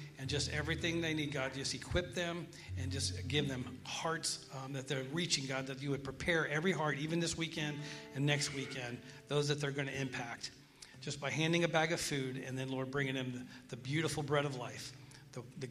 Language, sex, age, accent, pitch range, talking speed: English, male, 40-59, American, 135-155 Hz, 215 wpm